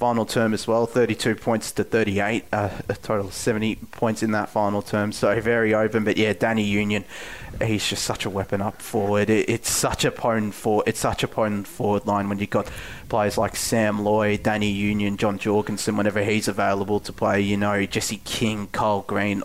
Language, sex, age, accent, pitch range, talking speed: English, male, 20-39, Australian, 105-120 Hz, 205 wpm